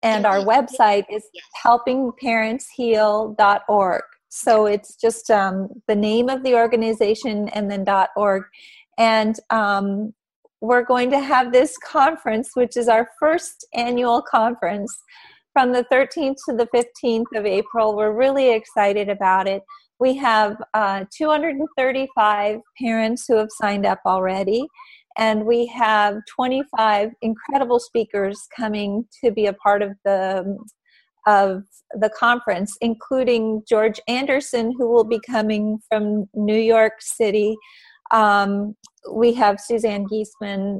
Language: English